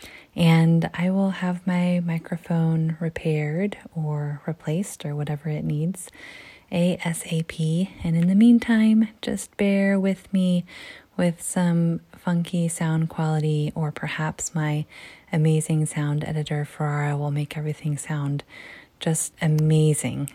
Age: 20-39